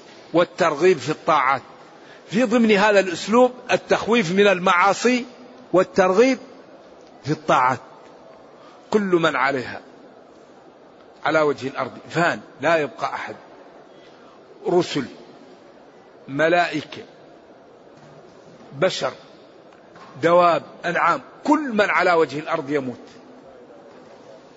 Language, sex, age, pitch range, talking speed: Arabic, male, 50-69, 160-185 Hz, 85 wpm